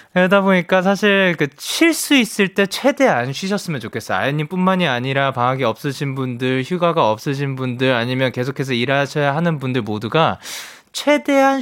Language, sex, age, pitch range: Korean, male, 20-39, 135-205 Hz